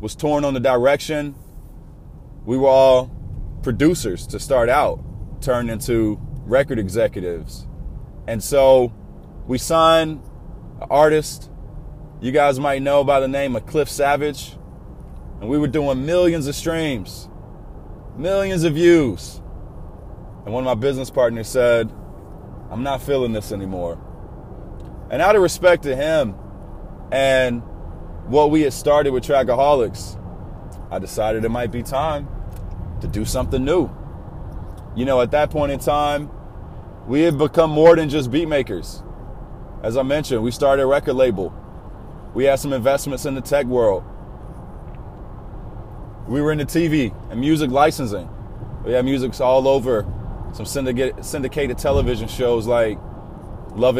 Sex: male